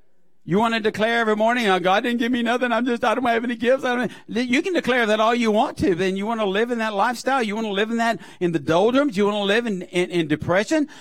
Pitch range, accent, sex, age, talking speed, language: 220-280 Hz, American, male, 60-79, 305 wpm, English